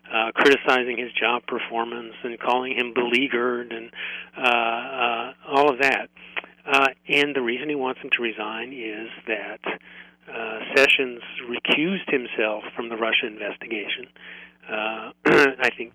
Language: English